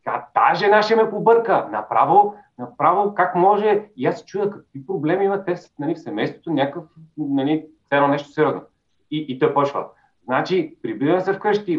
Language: Bulgarian